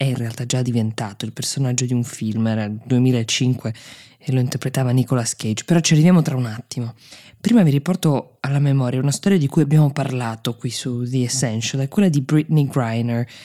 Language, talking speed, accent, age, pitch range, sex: Italian, 195 wpm, native, 20-39, 125-155 Hz, female